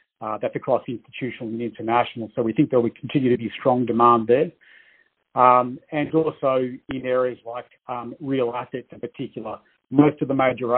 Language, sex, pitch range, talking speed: English, male, 120-140 Hz, 190 wpm